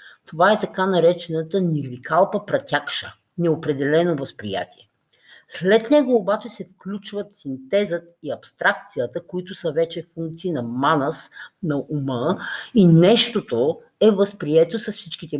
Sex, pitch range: female, 150-200 Hz